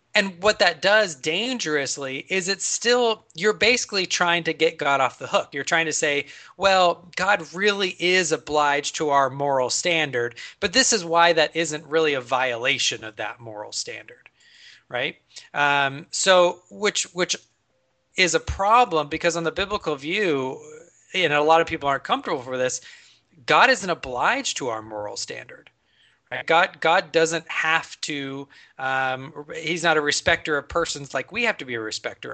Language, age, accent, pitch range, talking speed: English, 30-49, American, 145-190 Hz, 175 wpm